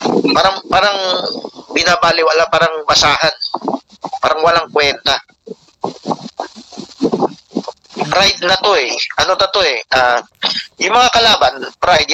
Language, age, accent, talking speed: Filipino, 40-59, native, 105 wpm